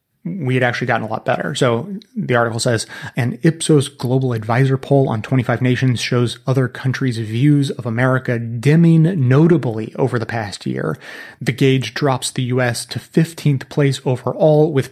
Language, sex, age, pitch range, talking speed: English, male, 30-49, 115-140 Hz, 165 wpm